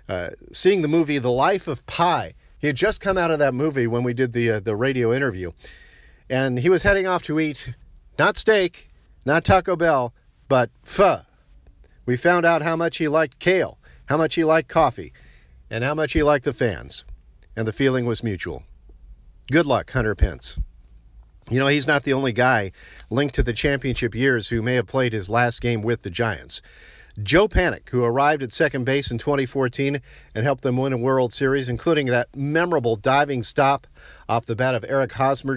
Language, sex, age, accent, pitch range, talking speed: English, male, 50-69, American, 115-155 Hz, 195 wpm